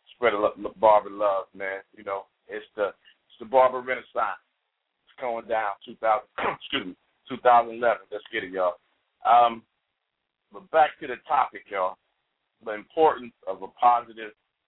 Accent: American